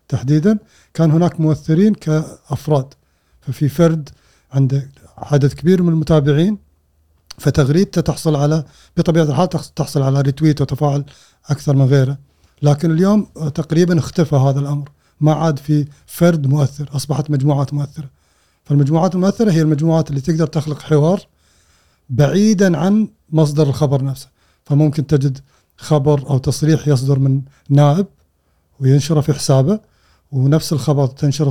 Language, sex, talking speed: Arabic, male, 125 wpm